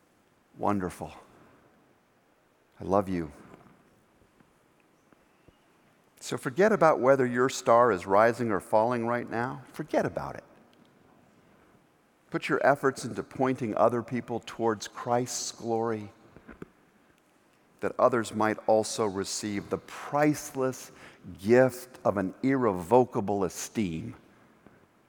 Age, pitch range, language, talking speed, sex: 50-69, 105-150 Hz, English, 100 wpm, male